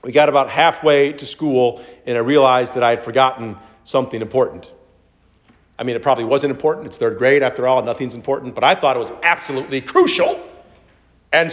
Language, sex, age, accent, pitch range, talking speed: English, male, 40-59, American, 120-145 Hz, 185 wpm